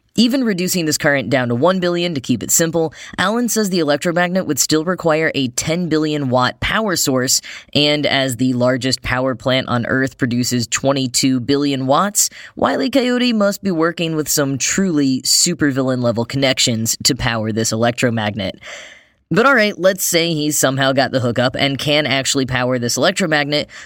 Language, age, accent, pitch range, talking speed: English, 10-29, American, 125-165 Hz, 170 wpm